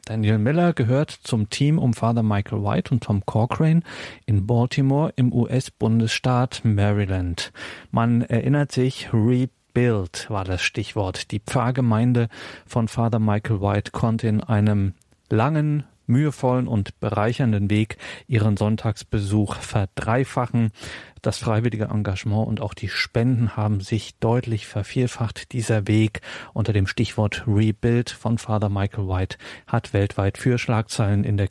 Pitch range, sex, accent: 105-125 Hz, male, German